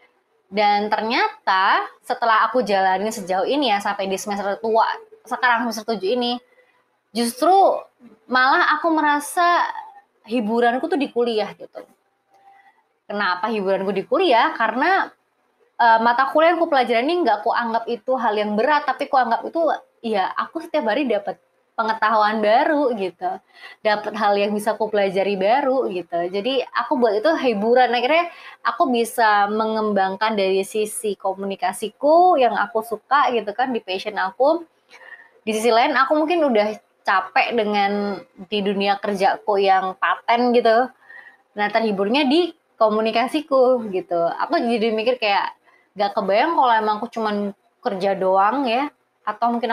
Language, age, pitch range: Indonesian, 20-39, 205-275 Hz